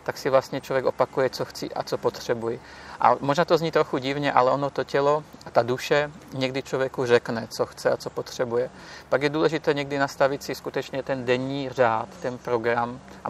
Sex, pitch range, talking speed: male, 120-135 Hz, 195 wpm